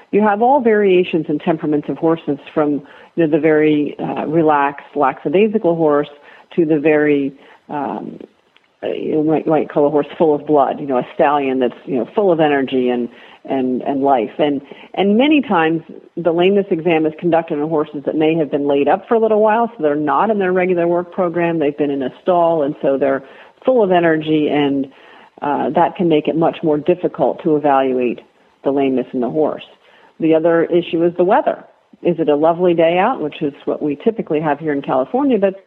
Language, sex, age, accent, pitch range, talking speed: English, female, 50-69, American, 145-185 Hz, 205 wpm